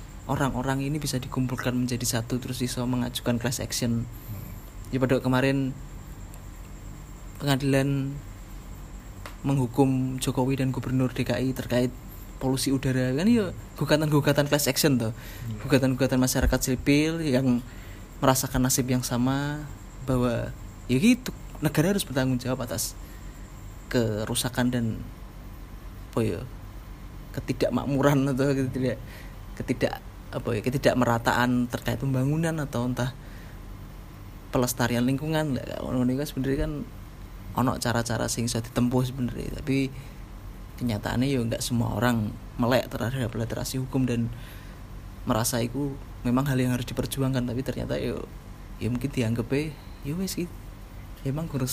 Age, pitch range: 20-39, 110-135 Hz